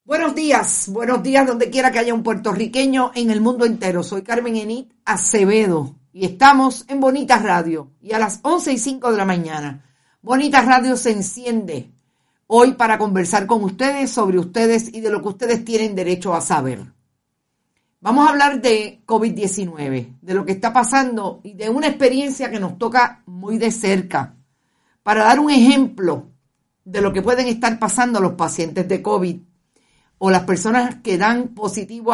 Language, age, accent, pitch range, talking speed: Spanish, 50-69, American, 185-235 Hz, 170 wpm